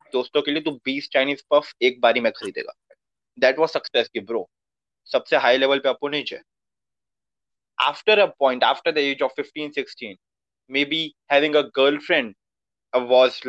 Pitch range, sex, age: 135-170 Hz, male, 20-39